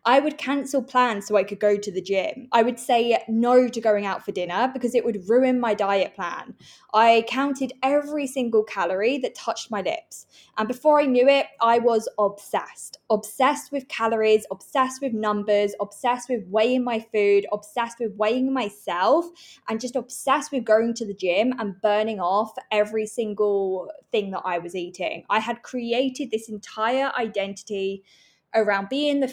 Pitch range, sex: 210-275 Hz, female